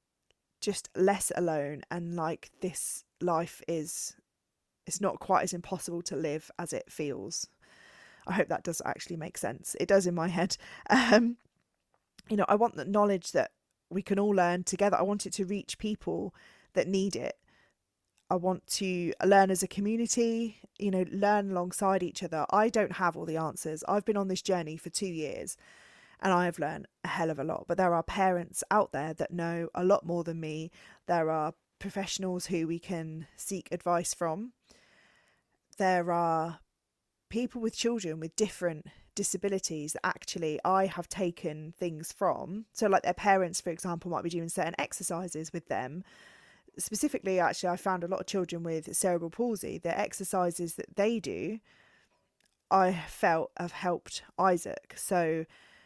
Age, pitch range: 20-39, 170-200 Hz